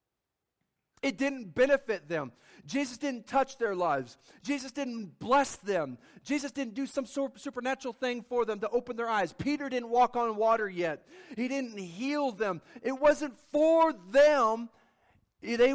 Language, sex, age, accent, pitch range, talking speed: English, male, 40-59, American, 180-255 Hz, 150 wpm